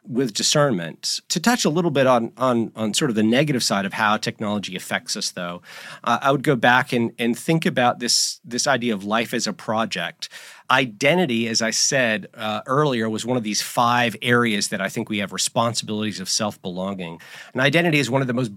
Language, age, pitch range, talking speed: English, 40-59, 110-135 Hz, 210 wpm